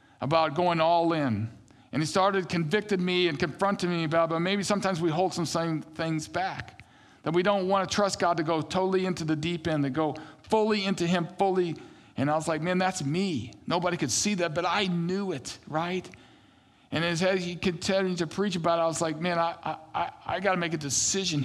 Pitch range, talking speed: 145-185 Hz, 220 wpm